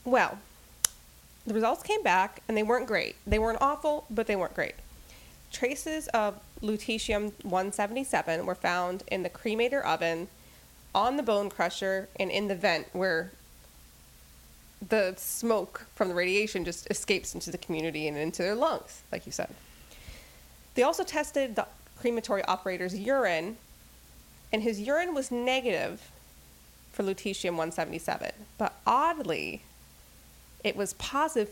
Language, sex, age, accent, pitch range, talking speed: English, female, 20-39, American, 160-220 Hz, 135 wpm